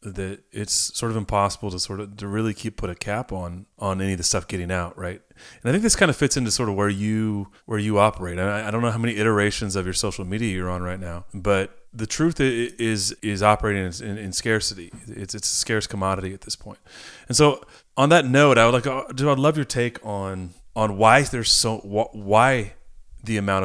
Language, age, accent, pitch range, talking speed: English, 30-49, American, 95-115 Hz, 235 wpm